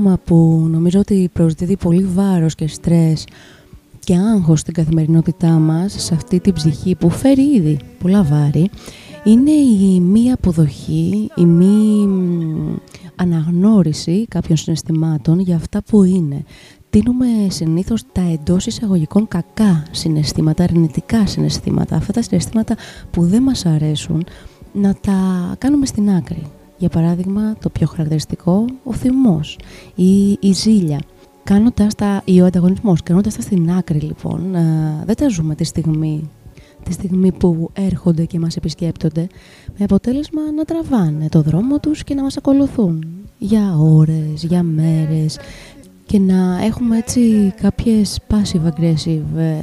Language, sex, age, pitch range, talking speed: Greek, female, 20-39, 160-205 Hz, 130 wpm